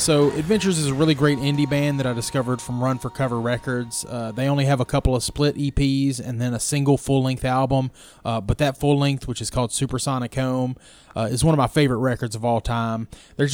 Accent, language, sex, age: American, English, male, 20-39